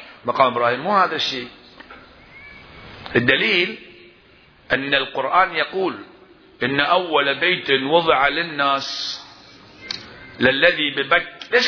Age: 50-69